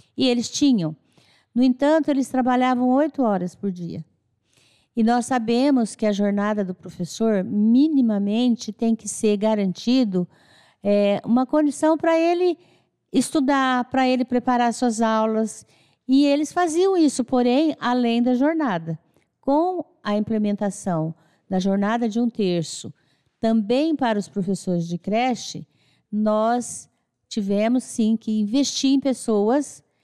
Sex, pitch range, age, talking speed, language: female, 205-260 Hz, 50-69, 125 wpm, Portuguese